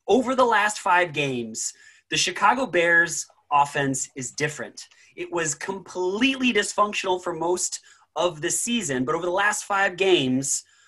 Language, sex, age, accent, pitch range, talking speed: English, male, 30-49, American, 145-185 Hz, 145 wpm